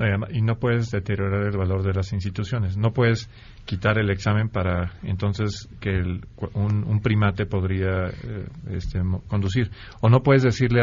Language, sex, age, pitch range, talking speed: Spanish, male, 40-59, 100-115 Hz, 160 wpm